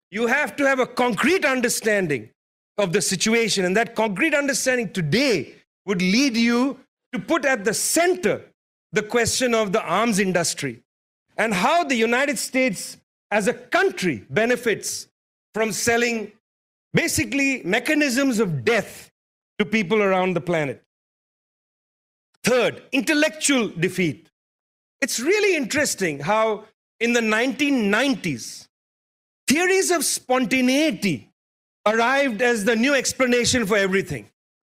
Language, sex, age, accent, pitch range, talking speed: English, male, 40-59, Indian, 215-275 Hz, 120 wpm